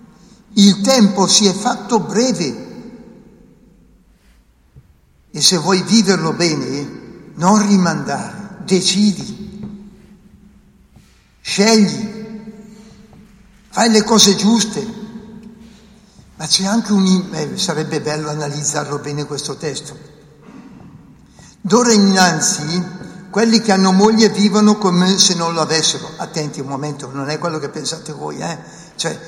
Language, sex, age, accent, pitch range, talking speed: Italian, male, 60-79, native, 150-215 Hz, 110 wpm